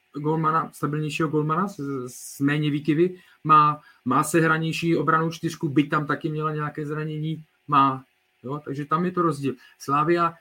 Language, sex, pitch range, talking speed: Czech, male, 130-165 Hz, 160 wpm